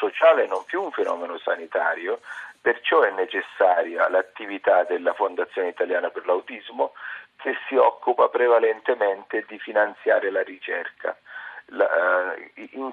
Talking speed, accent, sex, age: 110 wpm, native, male, 40-59